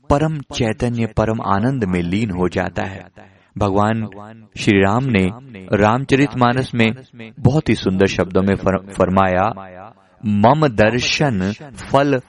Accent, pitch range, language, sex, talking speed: native, 100-130 Hz, Hindi, male, 115 wpm